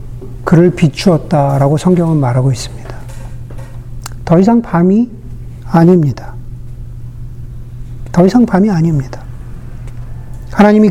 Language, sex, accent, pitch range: Korean, male, native, 120-185 Hz